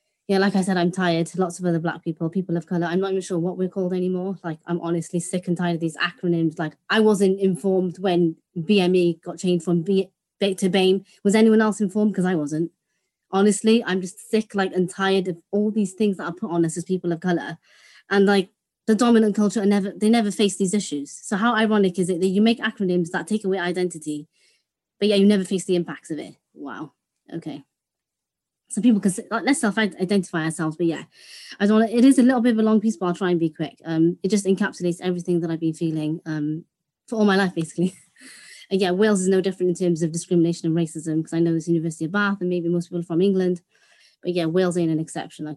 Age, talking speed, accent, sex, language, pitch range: 20-39, 235 wpm, British, female, English, 170-200 Hz